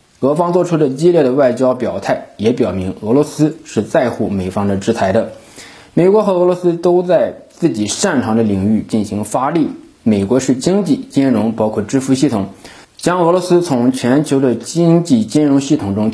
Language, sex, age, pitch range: Chinese, male, 20-39, 110-165 Hz